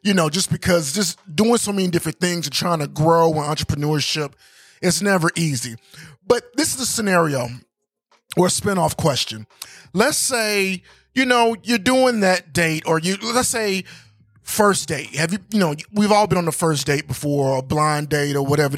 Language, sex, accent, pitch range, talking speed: English, male, American, 155-215 Hz, 190 wpm